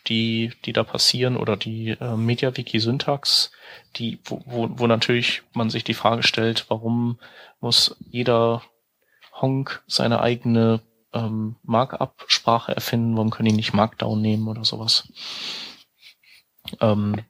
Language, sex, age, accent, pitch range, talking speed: German, male, 30-49, German, 110-120 Hz, 125 wpm